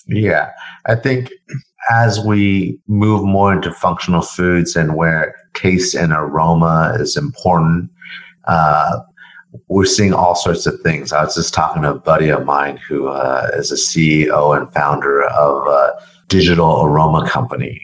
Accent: American